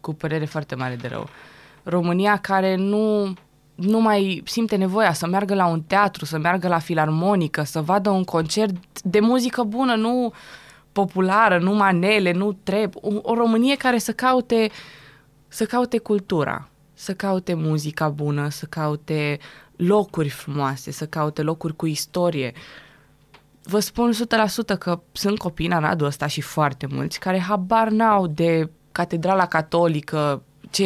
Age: 20-39